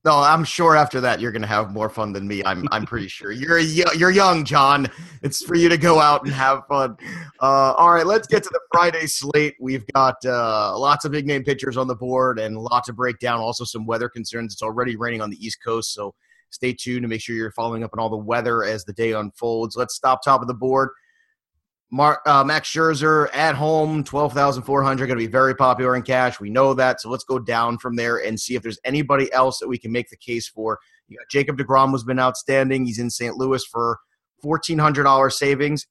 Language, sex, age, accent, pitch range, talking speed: English, male, 30-49, American, 115-140 Hz, 230 wpm